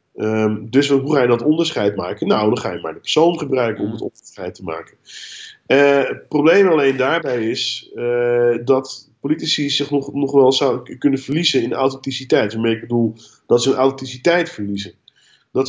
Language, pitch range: Dutch, 120-145 Hz